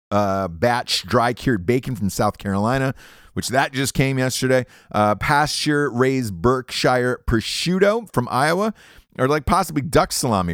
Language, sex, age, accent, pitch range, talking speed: English, male, 30-49, American, 100-145 Hz, 140 wpm